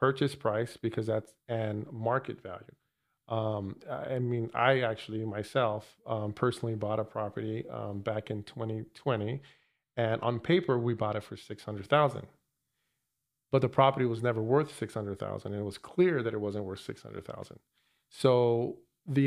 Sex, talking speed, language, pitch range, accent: male, 150 wpm, English, 110-130 Hz, American